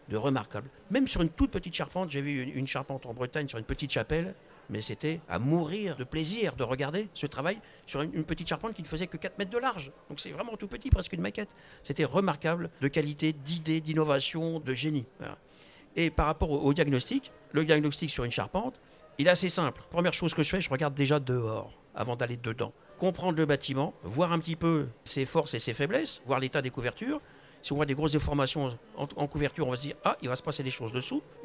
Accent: French